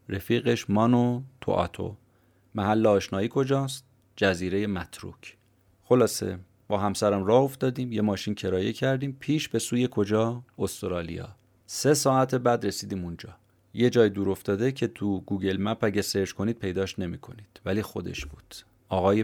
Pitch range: 95-120 Hz